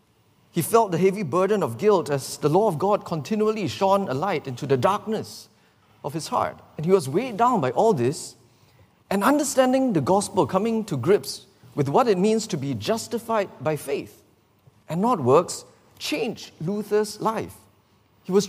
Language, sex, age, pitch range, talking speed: English, male, 50-69, 130-195 Hz, 175 wpm